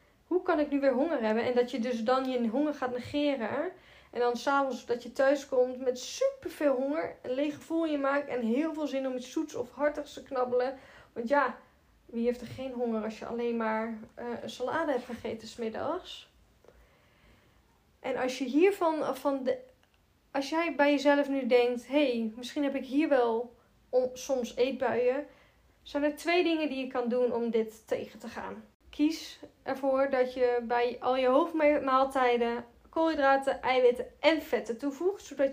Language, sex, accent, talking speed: Dutch, female, Dutch, 180 wpm